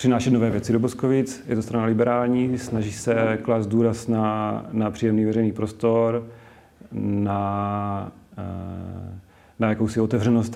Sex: male